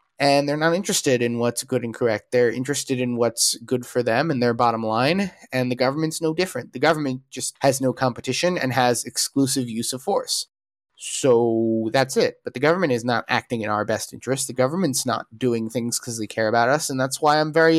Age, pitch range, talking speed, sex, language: 20-39, 120-150 Hz, 220 wpm, male, English